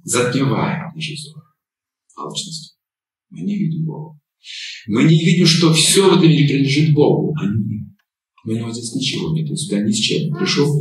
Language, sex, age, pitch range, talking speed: Russian, male, 50-69, 150-180 Hz, 170 wpm